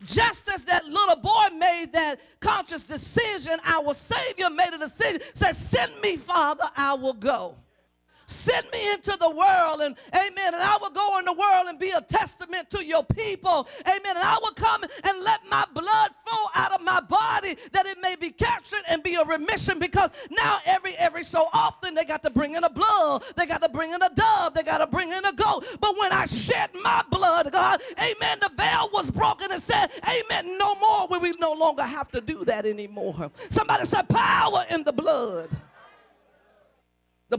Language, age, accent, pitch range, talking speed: English, 40-59, American, 305-390 Hz, 200 wpm